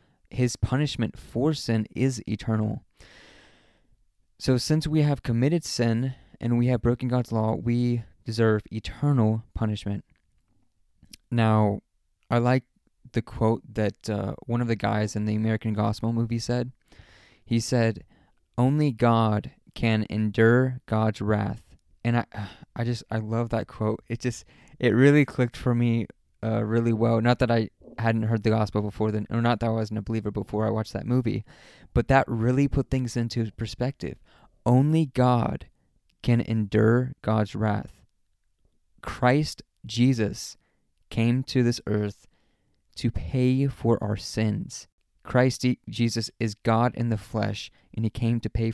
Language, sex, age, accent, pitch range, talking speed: English, male, 20-39, American, 105-120 Hz, 150 wpm